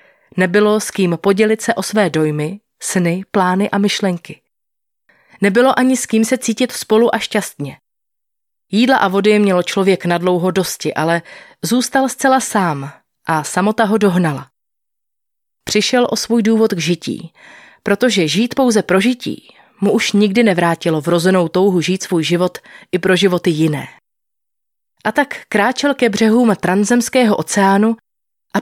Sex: female